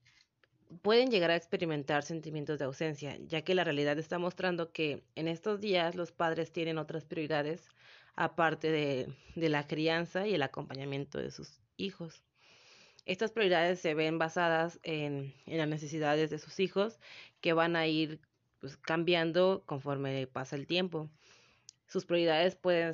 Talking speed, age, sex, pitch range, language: 150 wpm, 30-49, female, 150-175 Hz, Spanish